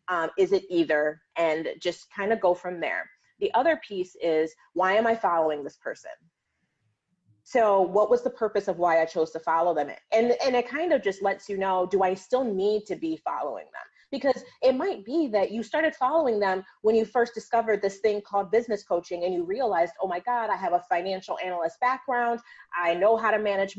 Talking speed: 215 wpm